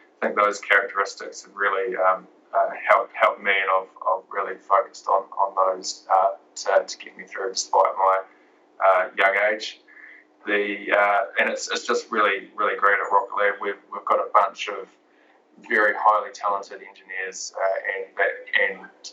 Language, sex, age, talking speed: English, male, 20-39, 175 wpm